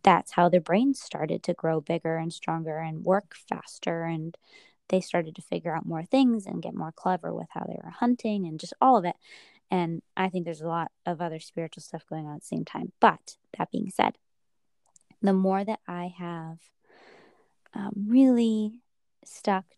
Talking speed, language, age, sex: 190 wpm, English, 20-39, female